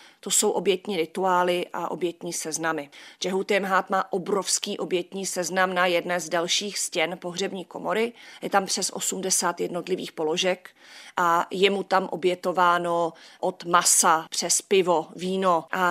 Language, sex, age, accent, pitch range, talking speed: Czech, female, 30-49, native, 170-195 Hz, 135 wpm